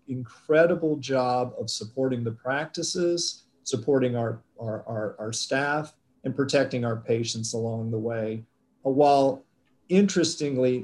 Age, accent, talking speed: 40-59, American, 115 wpm